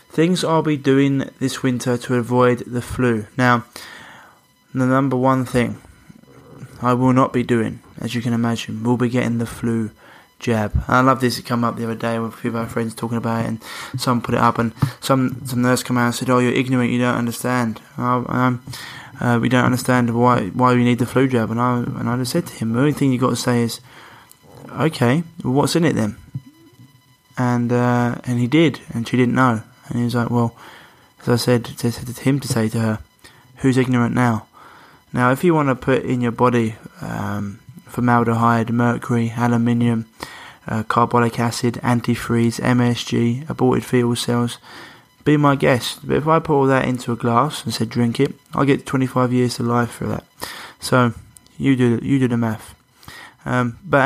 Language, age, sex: English, 20-39, male